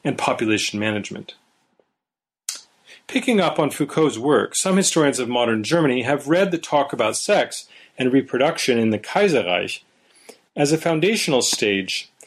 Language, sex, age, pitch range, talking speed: English, male, 40-59, 120-170 Hz, 135 wpm